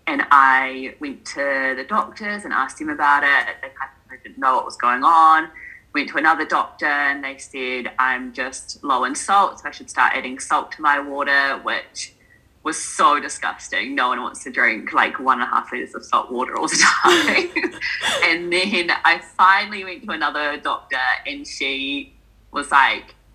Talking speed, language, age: 185 wpm, English, 20-39